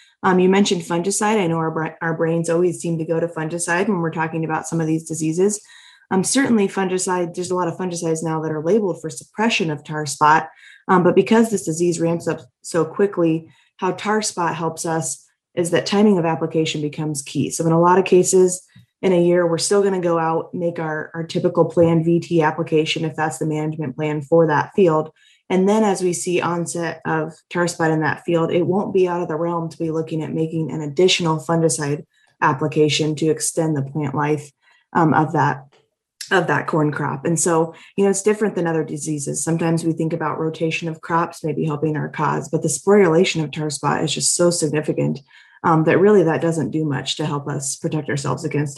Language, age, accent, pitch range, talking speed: English, 20-39, American, 155-180 Hz, 215 wpm